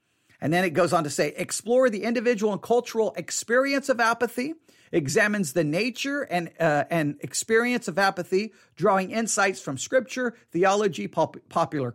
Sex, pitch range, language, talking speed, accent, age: male, 155-225 Hz, English, 155 wpm, American, 50-69